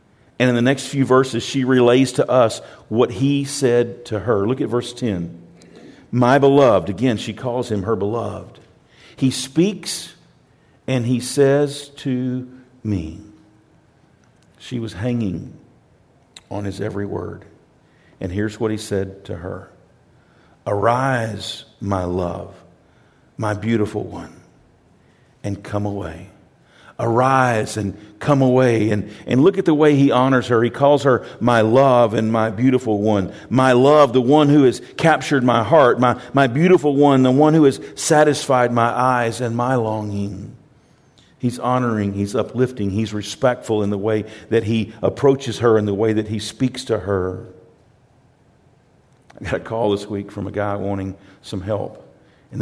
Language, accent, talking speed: English, American, 155 wpm